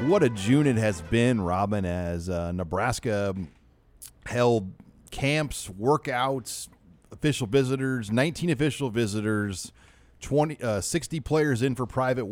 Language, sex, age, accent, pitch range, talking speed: English, male, 30-49, American, 95-120 Hz, 115 wpm